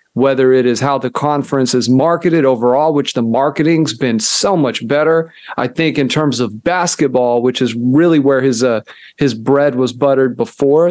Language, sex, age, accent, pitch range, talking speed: English, male, 40-59, American, 130-170 Hz, 180 wpm